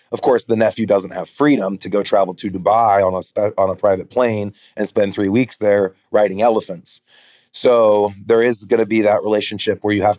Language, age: English, 30-49